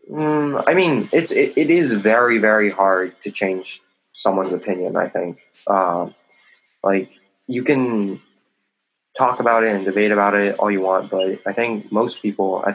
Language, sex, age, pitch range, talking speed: English, male, 20-39, 95-110 Hz, 170 wpm